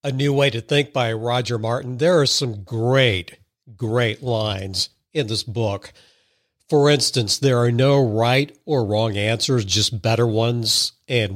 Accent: American